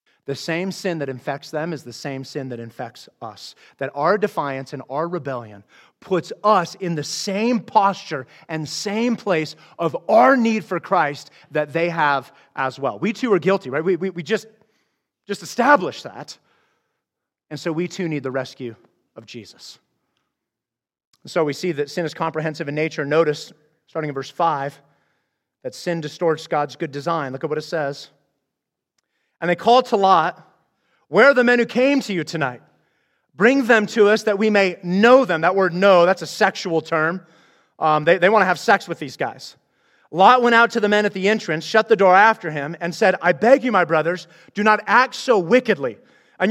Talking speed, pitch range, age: 195 wpm, 155-225 Hz, 30-49